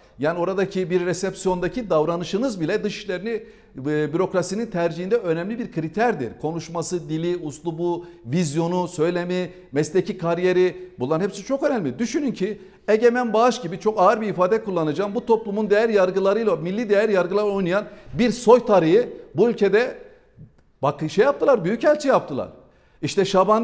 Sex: male